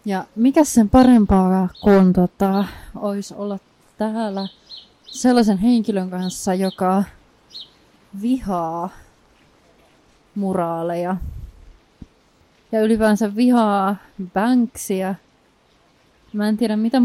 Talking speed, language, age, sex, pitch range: 80 wpm, Finnish, 30-49, female, 185-220 Hz